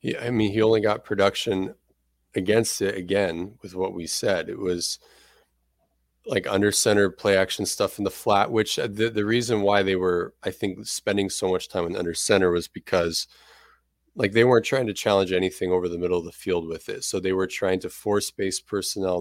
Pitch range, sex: 90-105 Hz, male